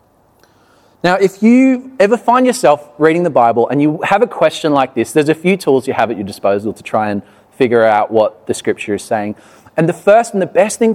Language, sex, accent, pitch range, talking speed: English, male, Australian, 120-170 Hz, 230 wpm